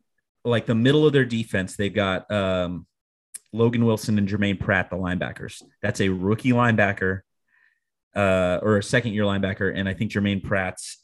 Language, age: English, 30-49